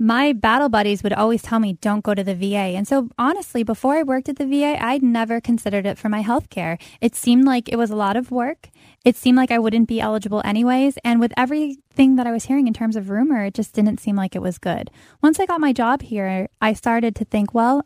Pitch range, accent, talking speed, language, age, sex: 205-255 Hz, American, 255 wpm, English, 10-29, female